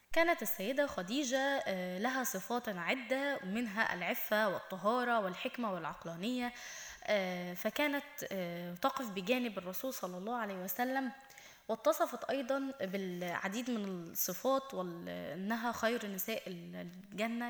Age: 10-29